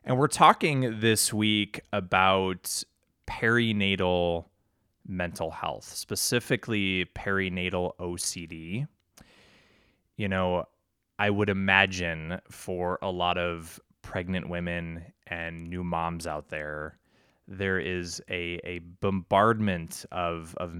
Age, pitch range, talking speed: 20-39, 85-105 Hz, 100 wpm